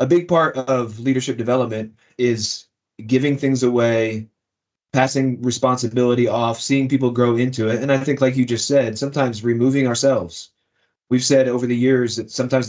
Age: 30-49